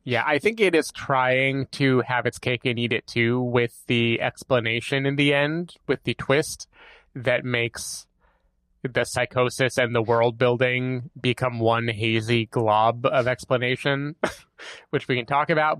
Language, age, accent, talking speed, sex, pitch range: English, 20-39, American, 160 wpm, male, 120-140 Hz